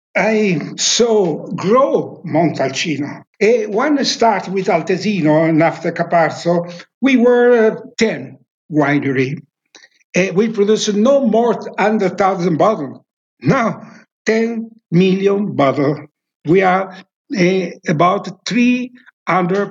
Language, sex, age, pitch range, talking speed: English, male, 60-79, 170-220 Hz, 105 wpm